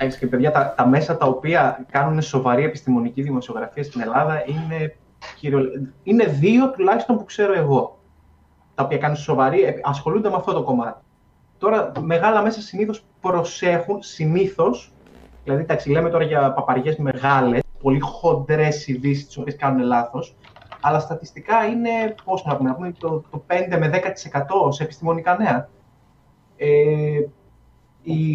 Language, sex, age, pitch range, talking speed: Greek, male, 20-39, 135-170 Hz, 140 wpm